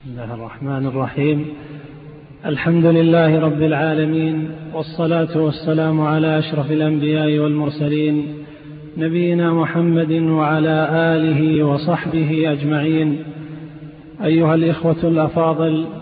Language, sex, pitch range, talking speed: Arabic, male, 160-190 Hz, 80 wpm